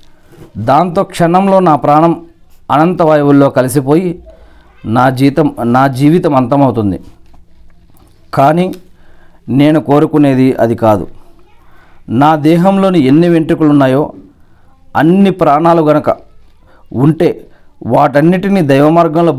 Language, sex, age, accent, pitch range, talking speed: Telugu, male, 40-59, native, 120-155 Hz, 85 wpm